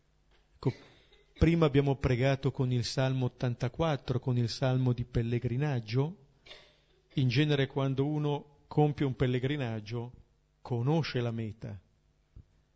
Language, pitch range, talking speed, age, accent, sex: Italian, 110-145 Hz, 105 wpm, 50-69, native, male